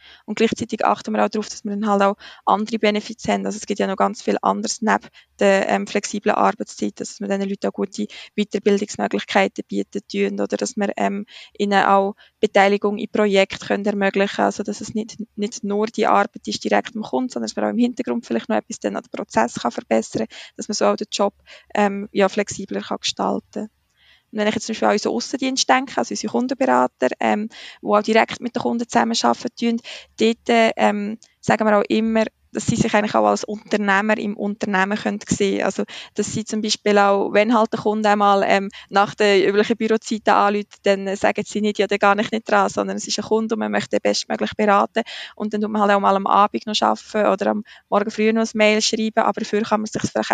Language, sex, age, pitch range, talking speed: German, female, 20-39, 195-215 Hz, 225 wpm